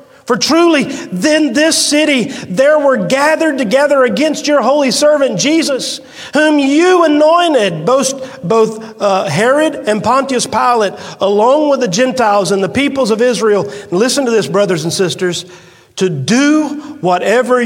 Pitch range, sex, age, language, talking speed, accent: 175-235 Hz, male, 50-69, English, 145 wpm, American